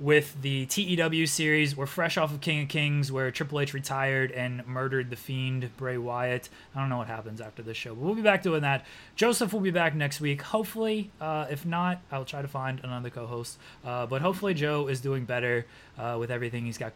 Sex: male